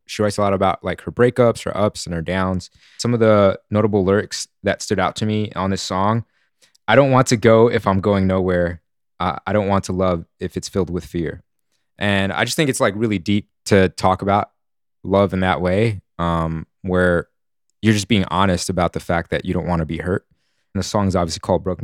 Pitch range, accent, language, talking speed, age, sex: 90-105 Hz, American, English, 230 wpm, 20-39, male